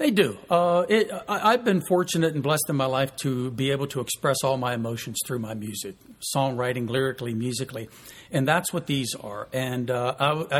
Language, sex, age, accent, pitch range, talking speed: English, male, 60-79, American, 130-155 Hz, 180 wpm